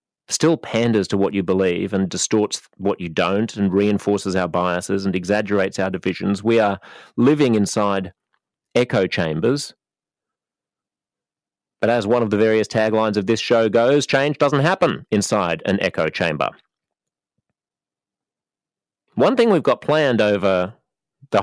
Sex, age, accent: male, 30-49, Australian